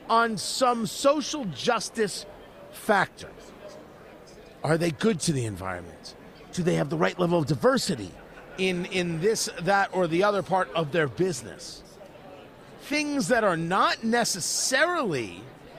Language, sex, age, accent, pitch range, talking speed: English, male, 50-69, American, 175-235 Hz, 135 wpm